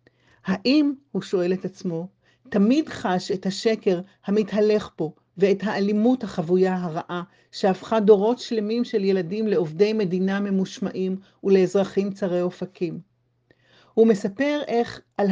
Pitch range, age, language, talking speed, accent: 175-225 Hz, 50-69, Hebrew, 120 wpm, native